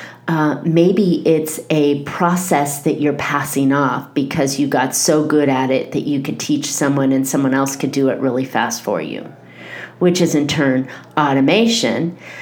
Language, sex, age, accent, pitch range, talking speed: English, female, 40-59, American, 135-160 Hz, 175 wpm